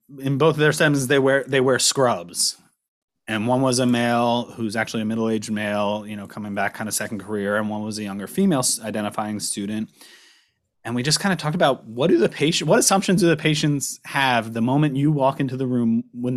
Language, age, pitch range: English, 30-49, 105-145 Hz